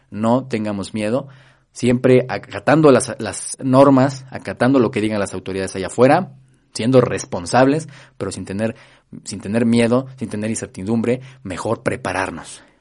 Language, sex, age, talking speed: Spanish, male, 30-49, 135 wpm